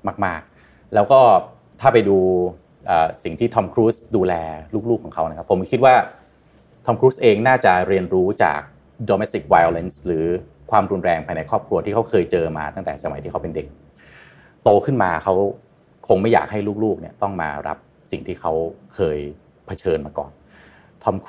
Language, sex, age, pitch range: Thai, male, 30-49, 90-140 Hz